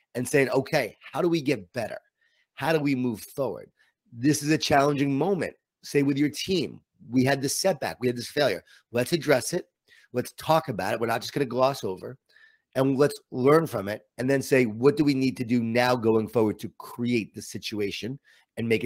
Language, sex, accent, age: English, male, American, 30-49